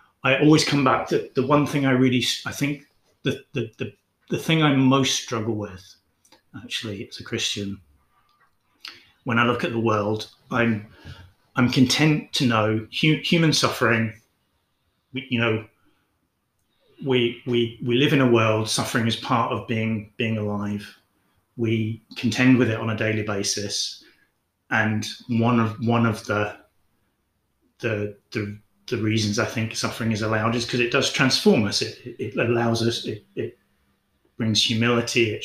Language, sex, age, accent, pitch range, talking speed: English, male, 30-49, British, 105-120 Hz, 160 wpm